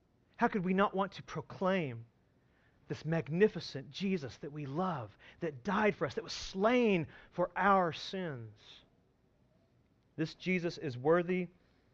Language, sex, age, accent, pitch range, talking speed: English, male, 40-59, American, 130-190 Hz, 135 wpm